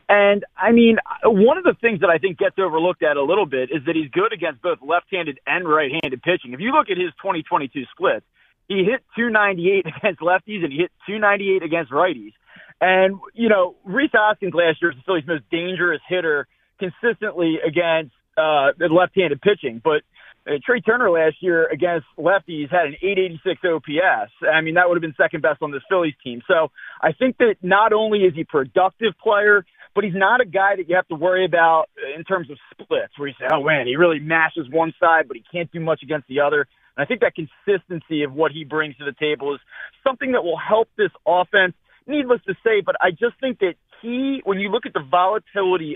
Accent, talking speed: American, 215 wpm